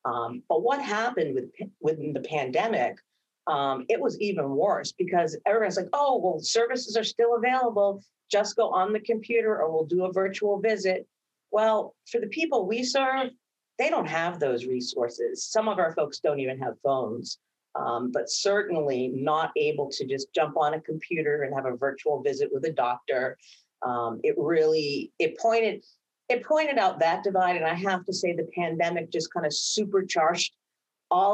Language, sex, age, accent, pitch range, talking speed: English, female, 40-59, American, 150-225 Hz, 180 wpm